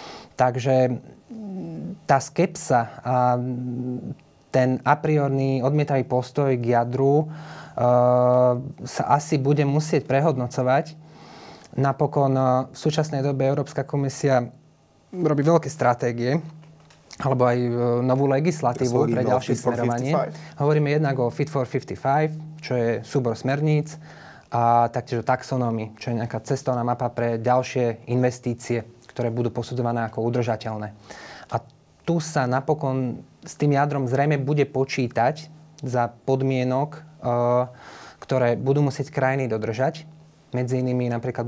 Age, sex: 20-39, male